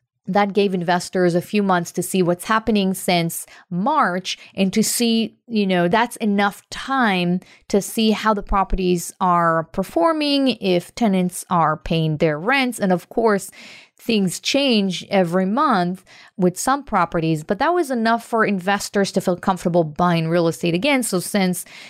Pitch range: 180-215 Hz